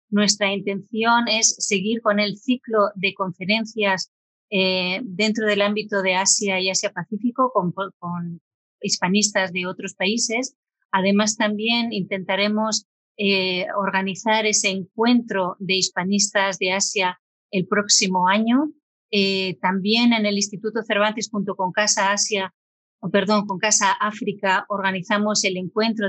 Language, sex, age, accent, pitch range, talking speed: Spanish, female, 30-49, Spanish, 190-215 Hz, 125 wpm